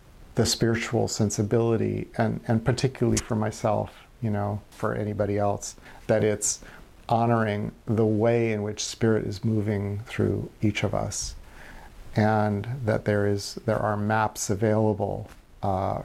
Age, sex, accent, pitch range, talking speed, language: 50-69, male, American, 100-110 Hz, 135 wpm, English